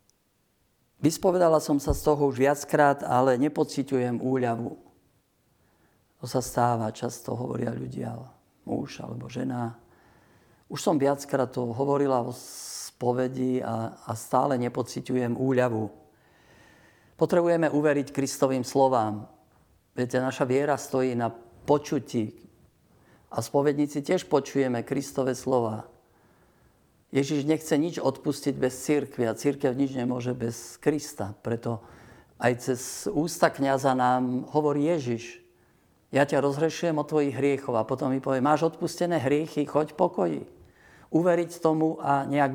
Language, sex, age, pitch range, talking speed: Slovak, male, 50-69, 125-145 Hz, 120 wpm